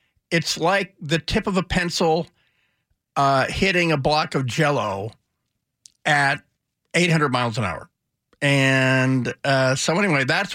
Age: 50-69